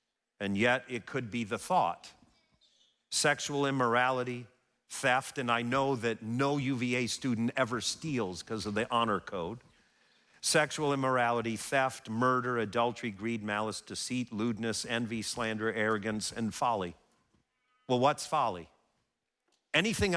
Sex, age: male, 50-69